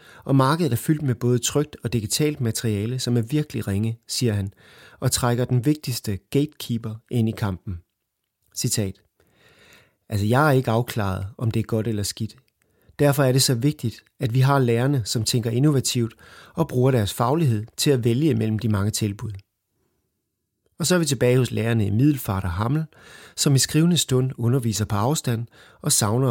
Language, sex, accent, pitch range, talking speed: Danish, male, native, 105-130 Hz, 180 wpm